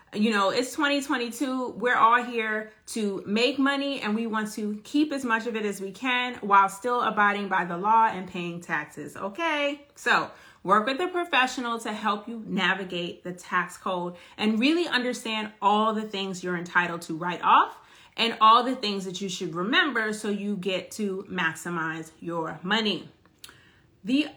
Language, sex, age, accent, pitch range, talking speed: English, female, 30-49, American, 185-245 Hz, 175 wpm